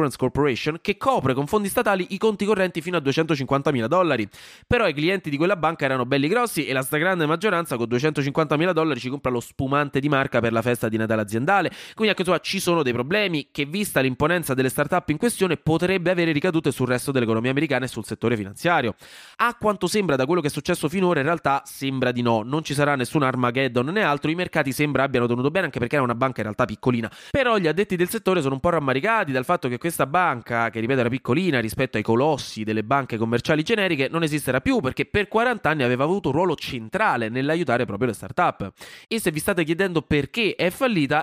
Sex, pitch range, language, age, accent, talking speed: male, 125-175 Hz, Italian, 20-39, native, 220 wpm